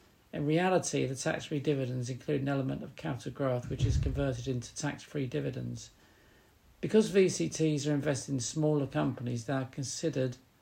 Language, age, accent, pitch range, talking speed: English, 50-69, British, 115-150 Hz, 155 wpm